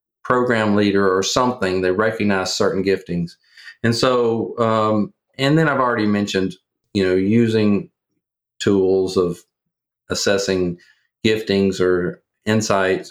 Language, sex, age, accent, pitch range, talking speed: English, male, 40-59, American, 95-115 Hz, 115 wpm